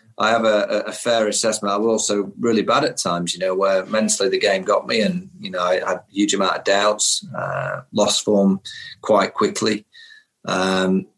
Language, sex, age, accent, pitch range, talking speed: English, male, 30-49, British, 100-115 Hz, 200 wpm